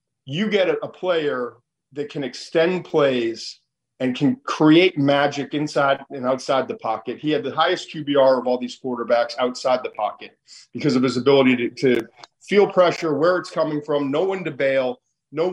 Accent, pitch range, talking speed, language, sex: American, 130-165 Hz, 180 wpm, English, male